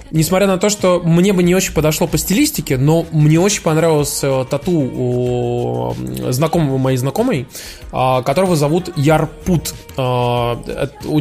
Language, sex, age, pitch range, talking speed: Russian, male, 20-39, 130-165 Hz, 135 wpm